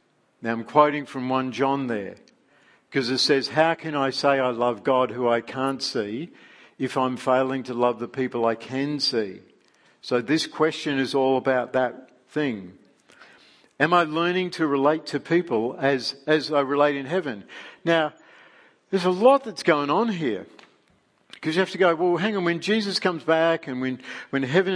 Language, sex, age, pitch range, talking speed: English, male, 50-69, 130-165 Hz, 185 wpm